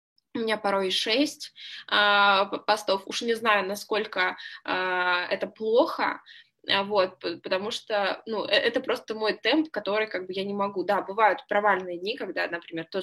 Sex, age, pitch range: female, 10-29, 185-215 Hz